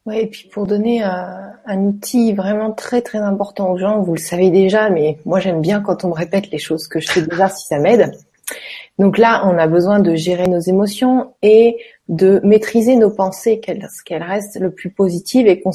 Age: 30-49